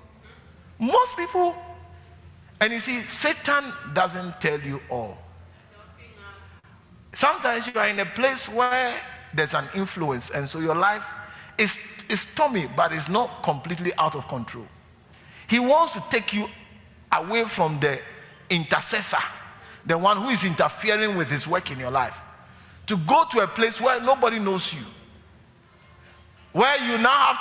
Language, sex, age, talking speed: English, male, 50-69, 145 wpm